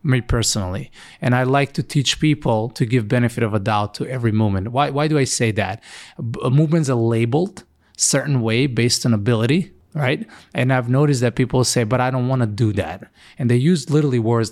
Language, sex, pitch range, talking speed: English, male, 115-145 Hz, 210 wpm